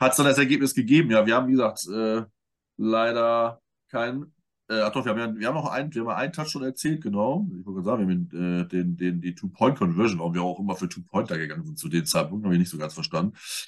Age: 20-39